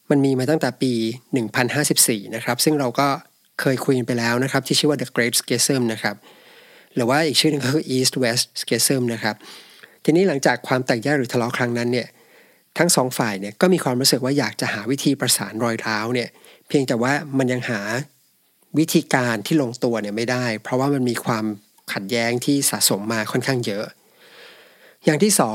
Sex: male